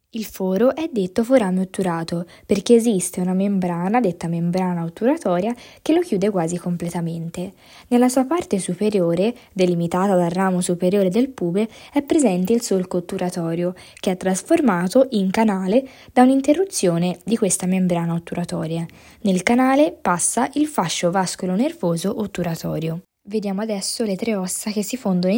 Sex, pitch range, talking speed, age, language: female, 175-235 Hz, 140 wpm, 20-39, Italian